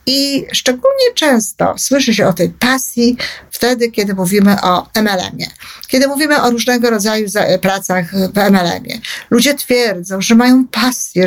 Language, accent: Polish, native